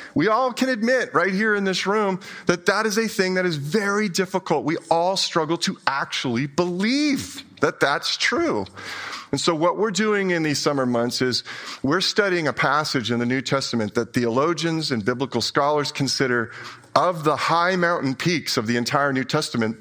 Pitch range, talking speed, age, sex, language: 125-195 Hz, 185 wpm, 40-59, male, English